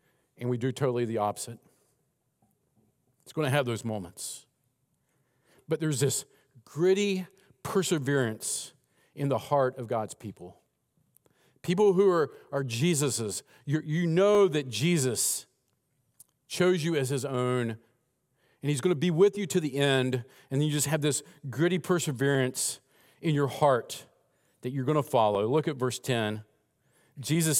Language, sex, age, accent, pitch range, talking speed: English, male, 50-69, American, 125-155 Hz, 145 wpm